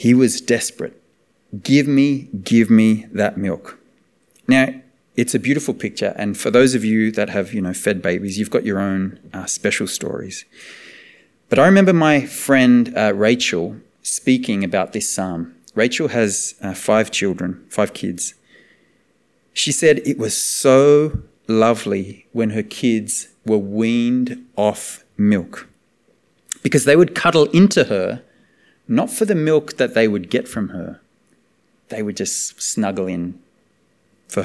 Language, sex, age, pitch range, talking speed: English, male, 30-49, 100-130 Hz, 150 wpm